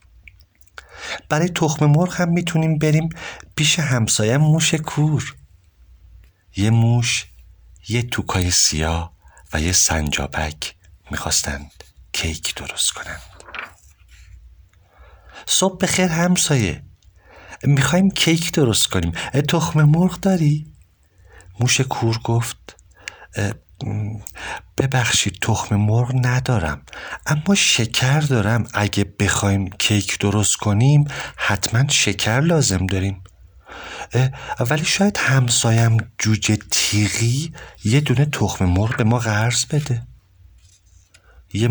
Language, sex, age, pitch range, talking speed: Persian, male, 50-69, 90-130 Hz, 95 wpm